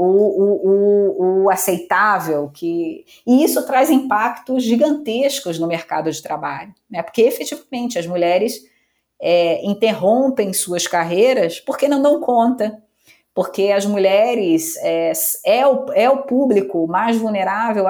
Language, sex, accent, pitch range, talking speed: Portuguese, female, Brazilian, 195-260 Hz, 115 wpm